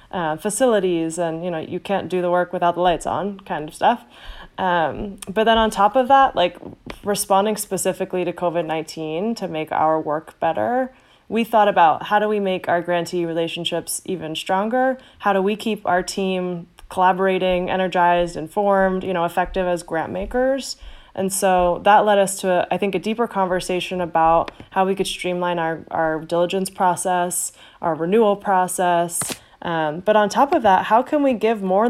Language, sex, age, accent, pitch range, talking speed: English, female, 20-39, American, 170-200 Hz, 180 wpm